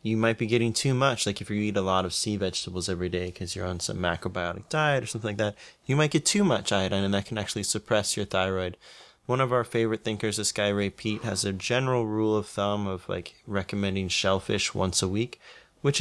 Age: 20-39